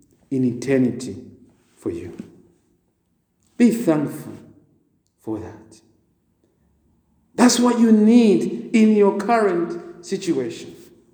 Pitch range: 180-260 Hz